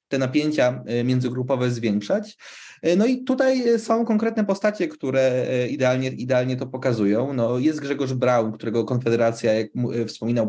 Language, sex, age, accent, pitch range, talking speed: Polish, male, 20-39, native, 120-155 Hz, 130 wpm